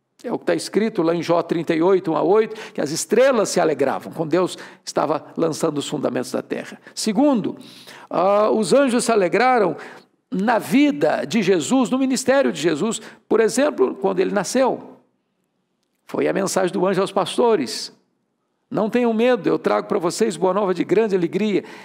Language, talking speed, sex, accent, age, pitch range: Portuguese, 170 wpm, male, Brazilian, 60-79, 190-245 Hz